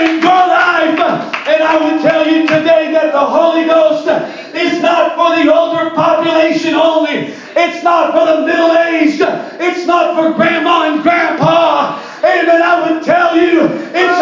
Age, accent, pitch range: 40-59, American, 315-340 Hz